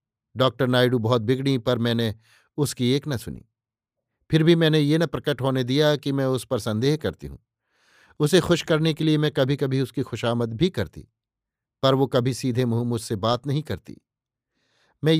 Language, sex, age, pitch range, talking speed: Hindi, male, 50-69, 120-145 Hz, 185 wpm